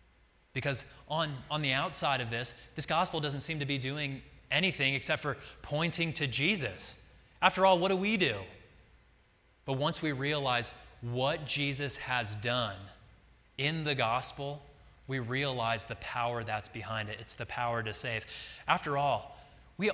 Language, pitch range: English, 110-135 Hz